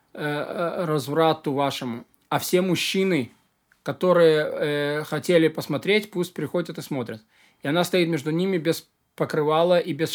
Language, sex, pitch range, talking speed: Russian, male, 145-185 Hz, 130 wpm